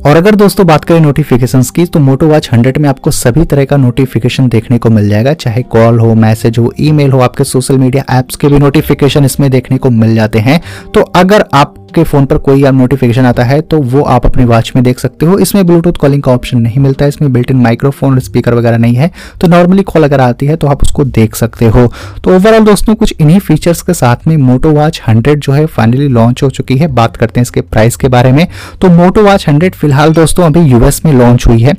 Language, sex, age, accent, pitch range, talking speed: Hindi, male, 30-49, native, 125-155 Hz, 125 wpm